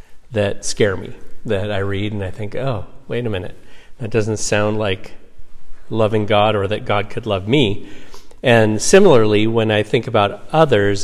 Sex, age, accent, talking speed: male, 40-59, American, 175 wpm